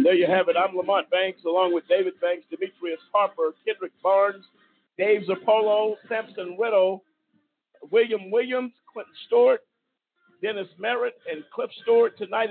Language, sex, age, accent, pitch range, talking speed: English, male, 50-69, American, 185-300 Hz, 140 wpm